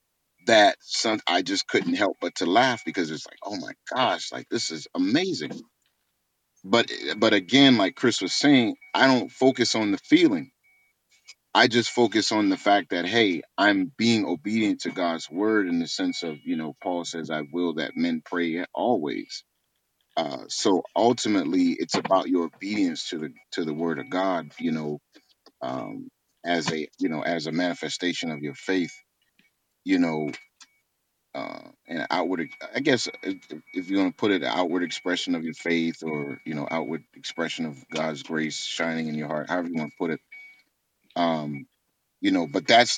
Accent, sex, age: American, male, 30-49